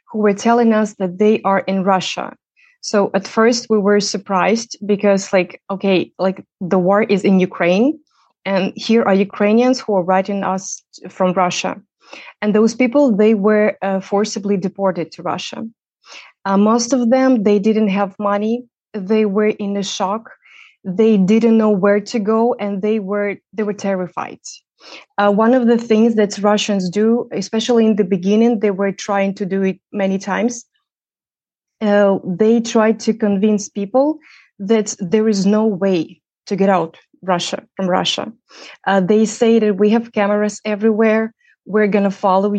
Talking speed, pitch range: 165 wpm, 195-225 Hz